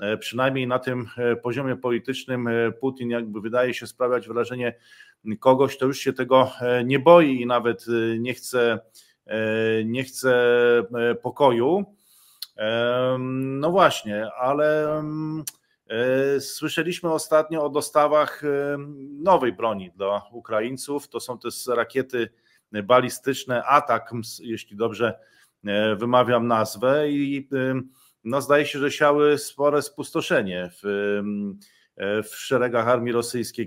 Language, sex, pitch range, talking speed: Polish, male, 115-135 Hz, 105 wpm